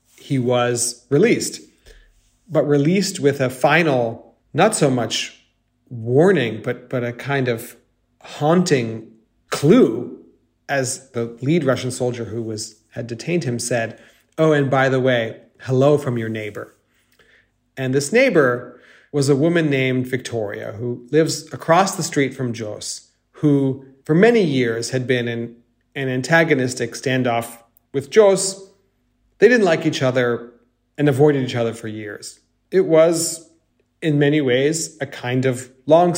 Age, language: 40-59, English